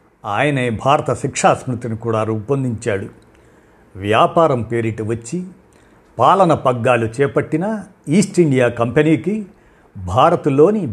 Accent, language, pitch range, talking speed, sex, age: native, Telugu, 115-160 Hz, 90 wpm, male, 50-69